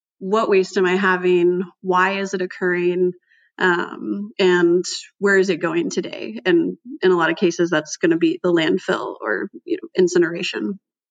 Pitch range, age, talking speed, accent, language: 180-210 Hz, 20-39, 175 wpm, American, English